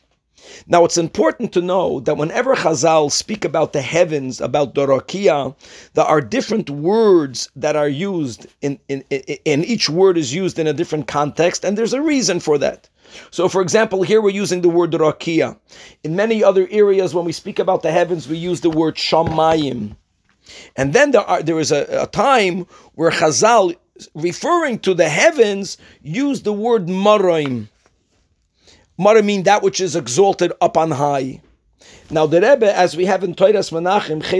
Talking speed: 180 wpm